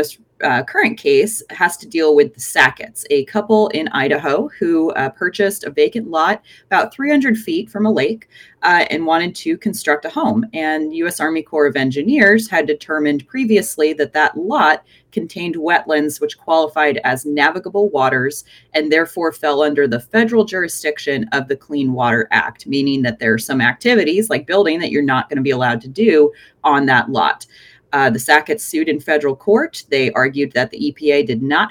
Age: 30-49